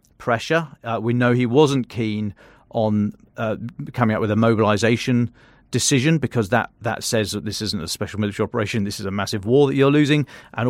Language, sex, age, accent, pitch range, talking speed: English, male, 40-59, British, 110-125 Hz, 195 wpm